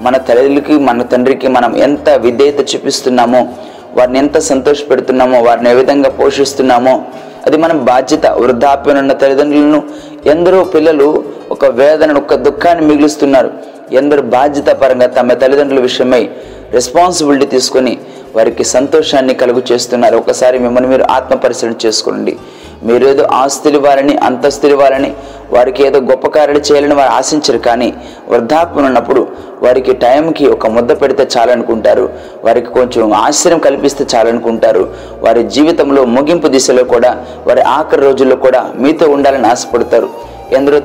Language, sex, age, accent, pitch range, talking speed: Telugu, male, 30-49, native, 130-150 Hz, 120 wpm